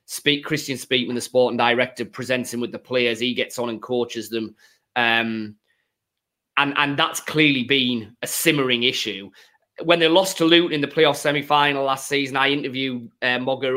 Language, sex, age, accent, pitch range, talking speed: English, male, 30-49, British, 120-150 Hz, 180 wpm